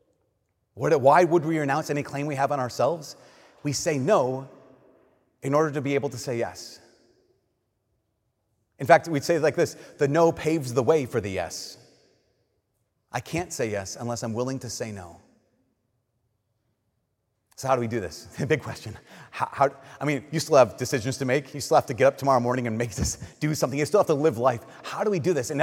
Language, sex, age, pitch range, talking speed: English, male, 30-49, 120-160 Hz, 210 wpm